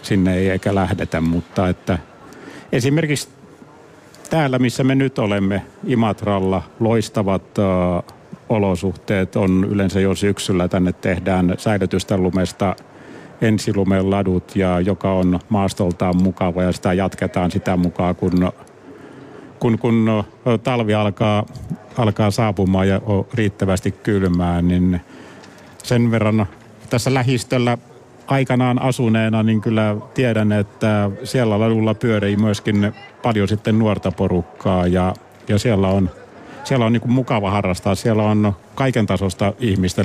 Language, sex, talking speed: Finnish, male, 120 wpm